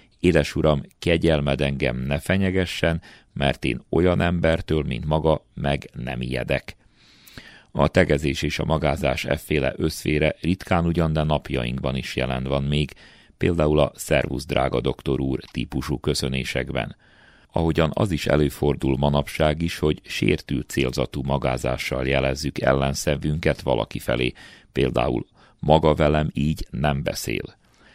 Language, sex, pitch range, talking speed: Hungarian, male, 65-80 Hz, 125 wpm